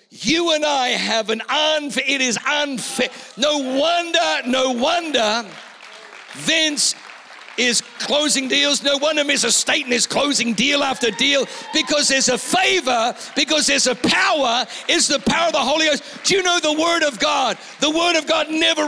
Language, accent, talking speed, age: English, British, 170 wpm, 50-69